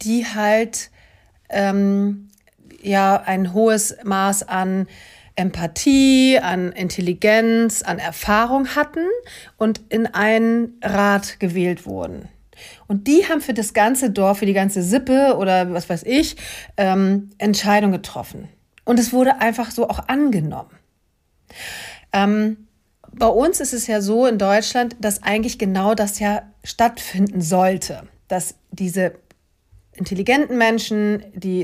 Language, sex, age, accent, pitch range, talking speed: German, female, 40-59, German, 190-230 Hz, 125 wpm